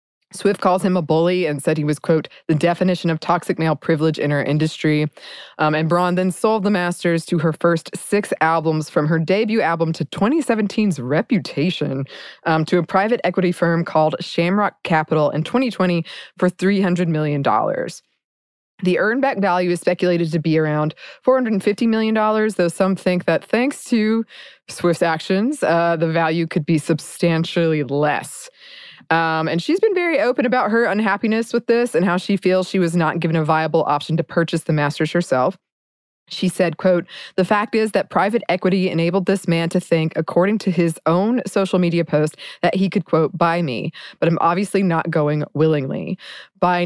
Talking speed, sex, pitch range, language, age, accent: 180 wpm, female, 160-195 Hz, English, 20-39, American